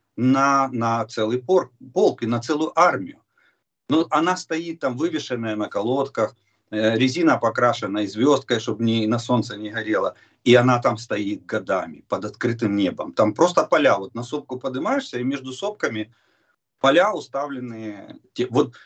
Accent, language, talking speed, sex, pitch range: native, Russian, 145 wpm, male, 110-150 Hz